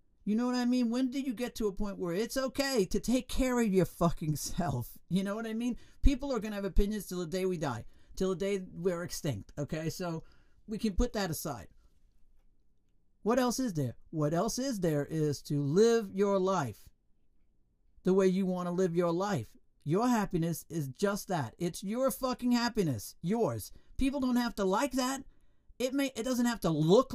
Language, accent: English, American